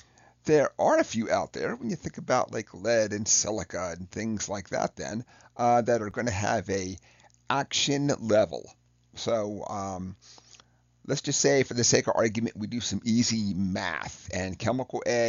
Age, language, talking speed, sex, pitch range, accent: 40-59, English, 180 wpm, male, 100-120 Hz, American